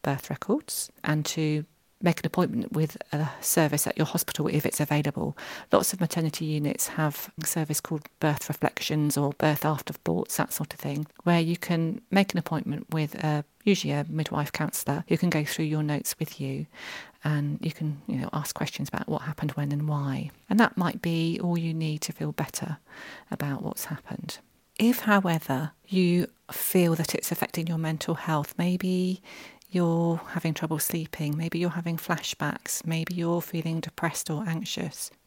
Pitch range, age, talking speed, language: 150-180 Hz, 40-59, 175 wpm, English